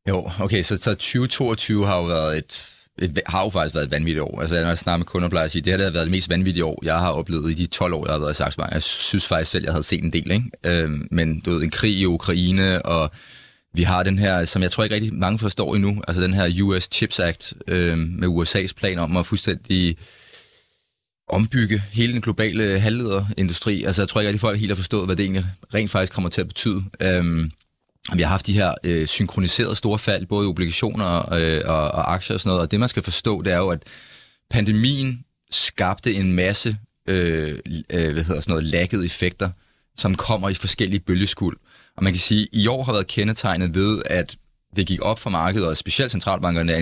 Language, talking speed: Danish, 225 wpm